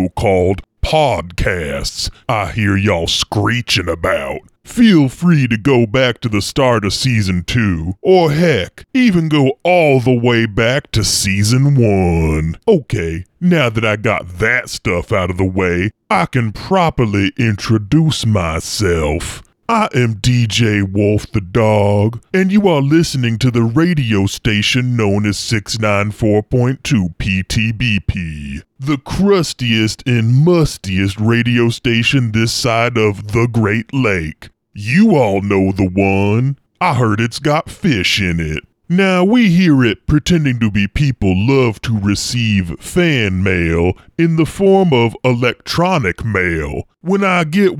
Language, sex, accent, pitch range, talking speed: English, female, American, 100-135 Hz, 135 wpm